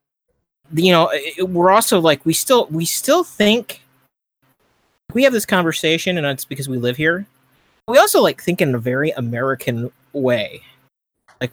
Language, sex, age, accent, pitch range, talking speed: English, male, 30-49, American, 130-165 Hz, 155 wpm